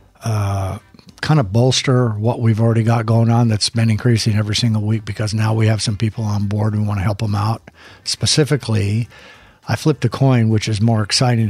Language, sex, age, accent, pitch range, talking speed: English, male, 50-69, American, 105-120 Hz, 210 wpm